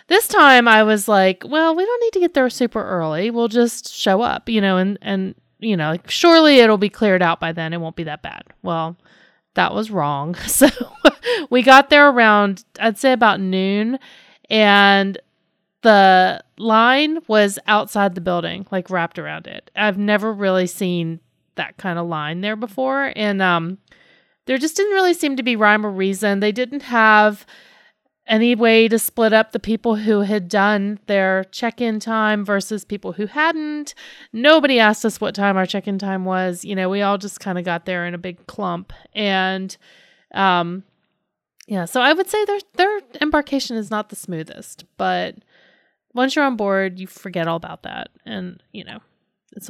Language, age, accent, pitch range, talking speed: English, 30-49, American, 190-250 Hz, 185 wpm